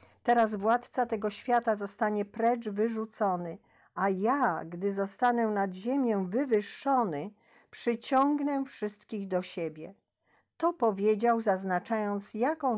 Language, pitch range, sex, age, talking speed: Polish, 170-220 Hz, female, 50-69, 105 wpm